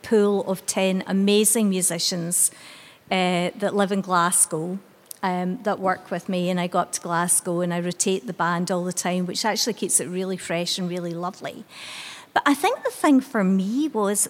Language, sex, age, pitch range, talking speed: English, female, 50-69, 190-225 Hz, 195 wpm